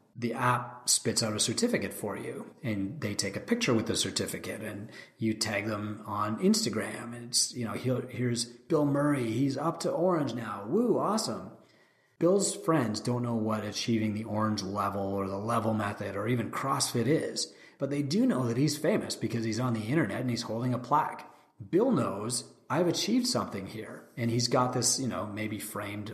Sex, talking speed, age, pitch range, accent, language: male, 195 wpm, 30-49, 105-135 Hz, American, English